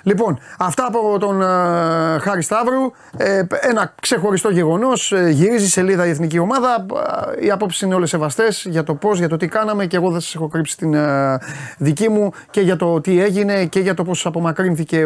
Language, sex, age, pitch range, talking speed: Greek, male, 30-49, 150-190 Hz, 180 wpm